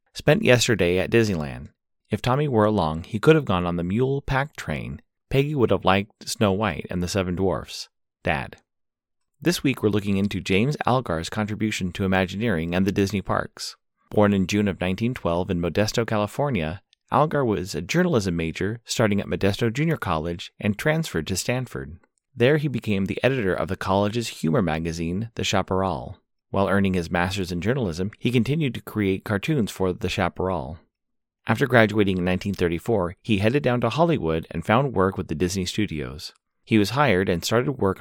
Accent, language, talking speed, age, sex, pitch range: American, English, 175 wpm, 30-49, male, 95-120 Hz